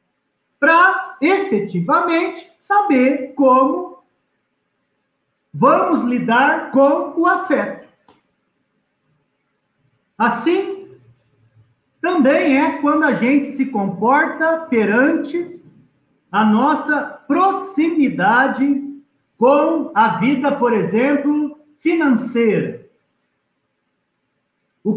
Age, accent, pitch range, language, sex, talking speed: 50-69, Brazilian, 225-305 Hz, Portuguese, male, 65 wpm